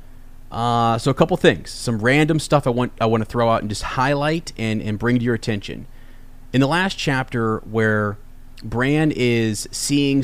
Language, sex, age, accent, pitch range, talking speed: English, male, 30-49, American, 110-140 Hz, 190 wpm